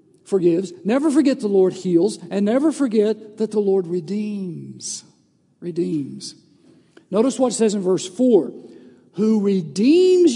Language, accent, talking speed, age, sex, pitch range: English, American, 135 wpm, 50-69, male, 205-275 Hz